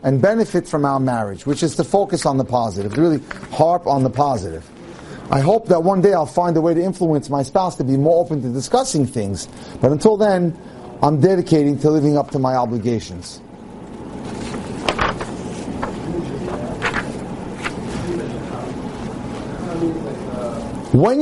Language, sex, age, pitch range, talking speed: English, male, 40-59, 130-175 Hz, 140 wpm